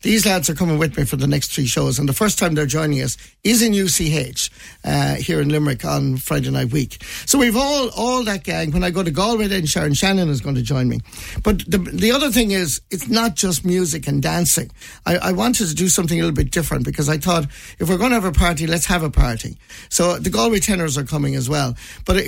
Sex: male